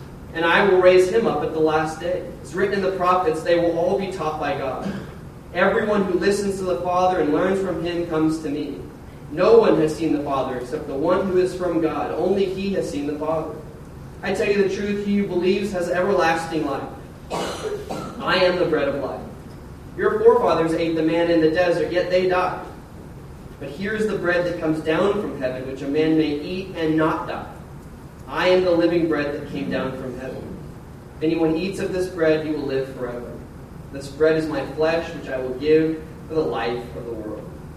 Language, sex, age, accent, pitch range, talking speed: English, male, 30-49, American, 155-180 Hz, 215 wpm